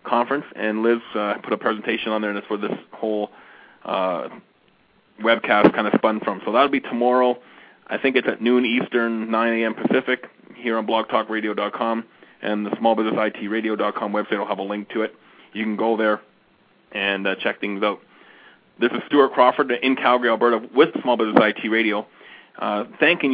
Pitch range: 105-120 Hz